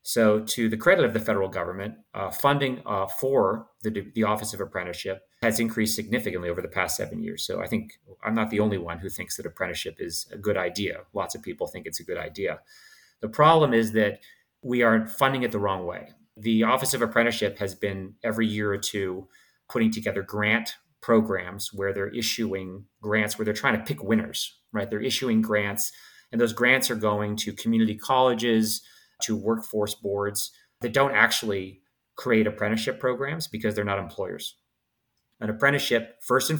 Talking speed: 185 wpm